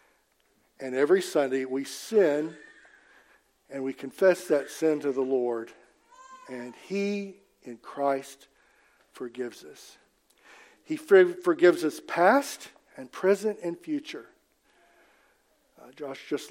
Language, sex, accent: English, male, American